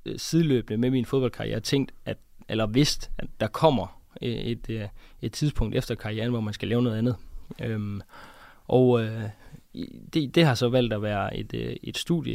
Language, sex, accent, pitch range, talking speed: Danish, male, native, 105-130 Hz, 180 wpm